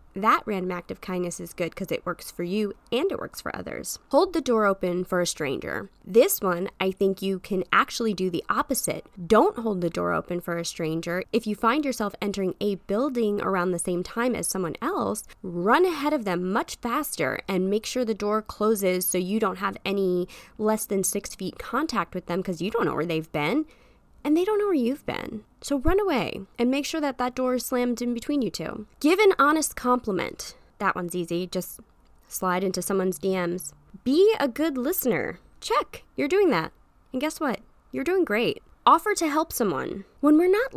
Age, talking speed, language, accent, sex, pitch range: 20-39, 210 wpm, English, American, female, 180-265 Hz